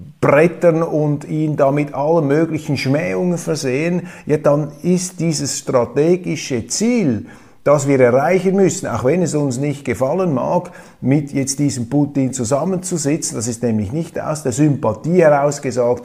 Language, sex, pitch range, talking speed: German, male, 120-165 Hz, 140 wpm